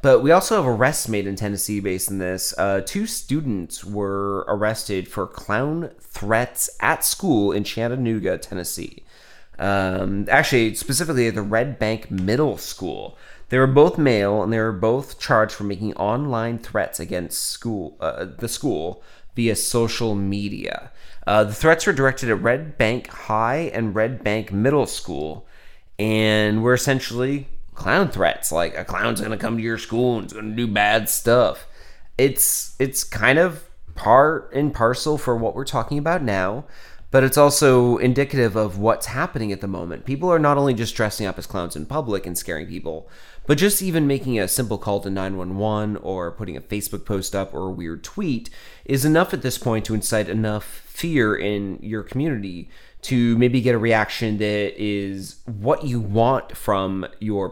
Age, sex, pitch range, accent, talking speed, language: 30-49, male, 100-130 Hz, American, 170 wpm, English